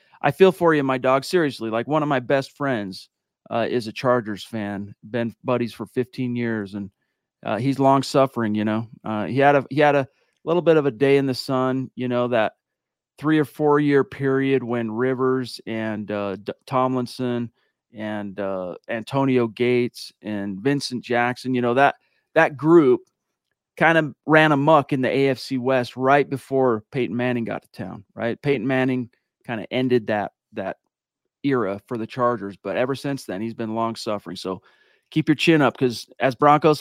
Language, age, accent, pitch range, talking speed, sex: English, 40-59, American, 115-145 Hz, 185 wpm, male